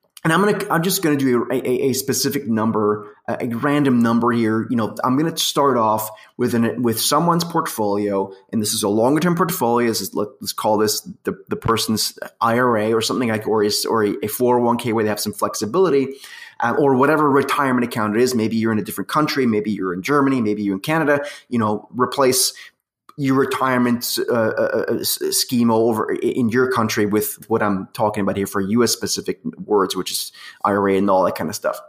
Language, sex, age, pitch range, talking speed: English, male, 20-39, 110-145 Hz, 205 wpm